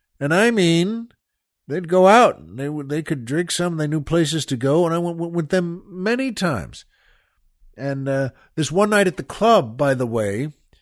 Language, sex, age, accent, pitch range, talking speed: English, male, 50-69, American, 115-170 Hz, 195 wpm